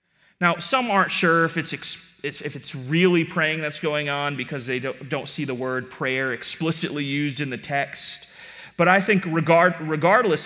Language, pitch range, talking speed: English, 135-185 Hz, 185 wpm